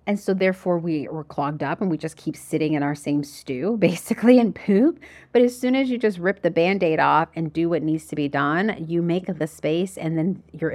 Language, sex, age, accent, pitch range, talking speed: English, female, 30-49, American, 150-195 Hz, 240 wpm